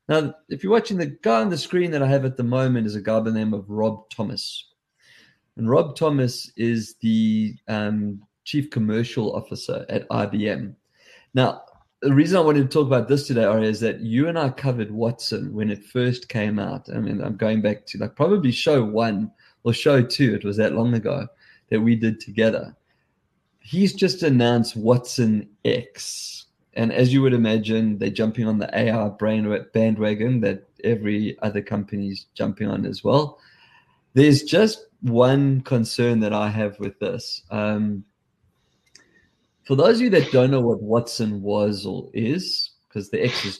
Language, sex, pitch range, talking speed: English, male, 105-130 Hz, 180 wpm